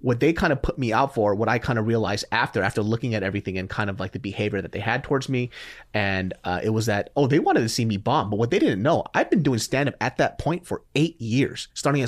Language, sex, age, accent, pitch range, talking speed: English, male, 30-49, American, 105-135 Hz, 290 wpm